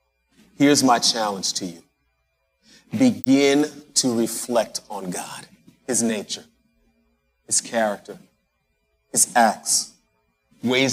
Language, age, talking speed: English, 30-49, 95 wpm